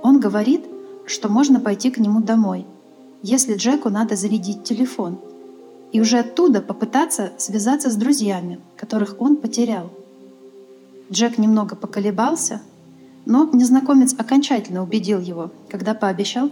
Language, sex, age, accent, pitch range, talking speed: Russian, female, 30-49, native, 200-255 Hz, 120 wpm